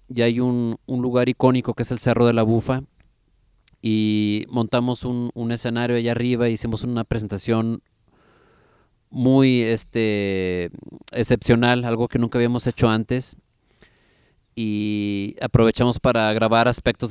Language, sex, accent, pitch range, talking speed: English, male, Mexican, 105-125 Hz, 135 wpm